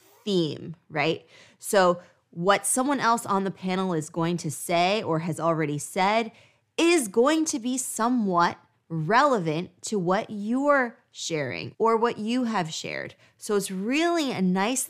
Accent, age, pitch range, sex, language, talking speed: American, 20-39, 165-215 Hz, female, English, 150 wpm